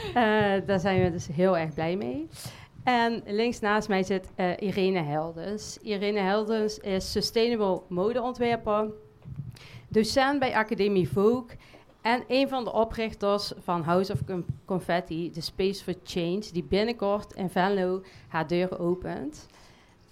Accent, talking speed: Dutch, 135 wpm